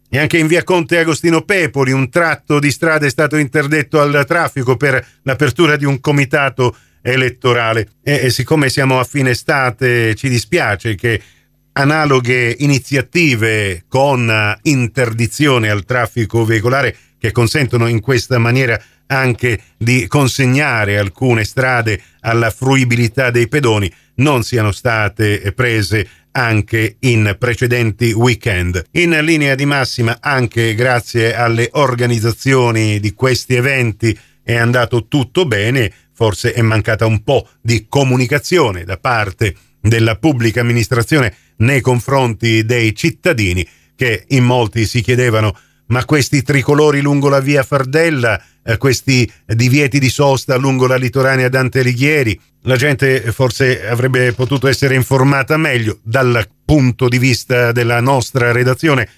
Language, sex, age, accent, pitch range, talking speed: Italian, male, 40-59, native, 115-135 Hz, 130 wpm